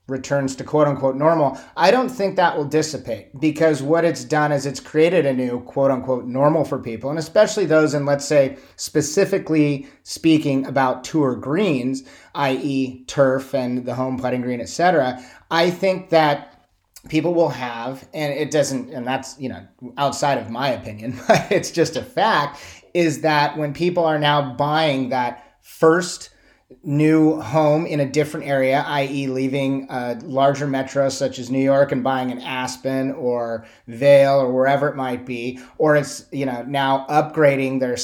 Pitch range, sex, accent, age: 130-150 Hz, male, American, 30-49